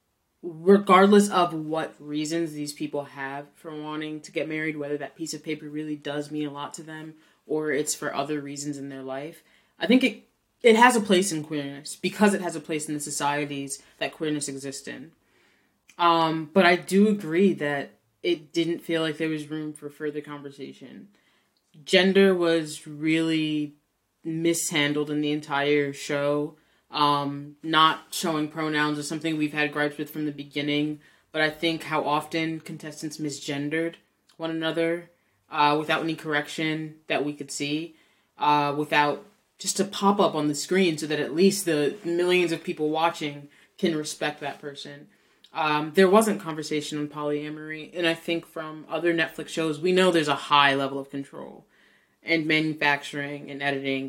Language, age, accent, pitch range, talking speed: English, 20-39, American, 145-165 Hz, 170 wpm